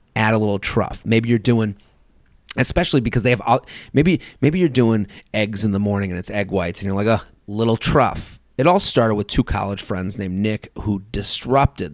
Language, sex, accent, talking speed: English, male, American, 205 wpm